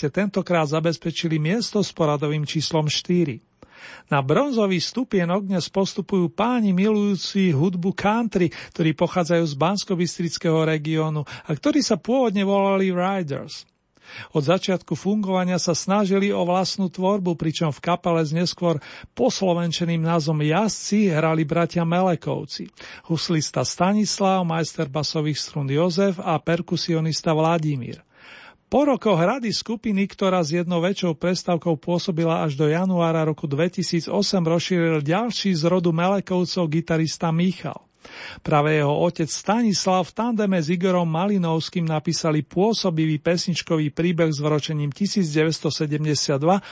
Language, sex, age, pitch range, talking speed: Slovak, male, 40-59, 160-190 Hz, 120 wpm